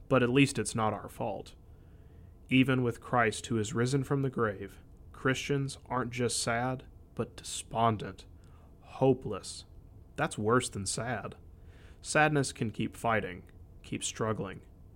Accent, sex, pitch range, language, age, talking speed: American, male, 95-120 Hz, English, 30-49, 130 wpm